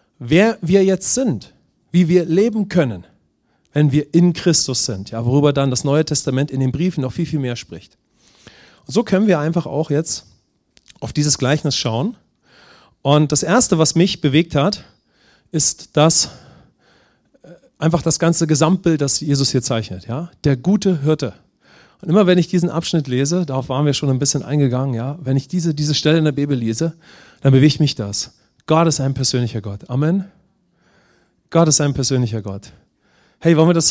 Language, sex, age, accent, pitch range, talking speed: English, male, 40-59, German, 135-170 Hz, 180 wpm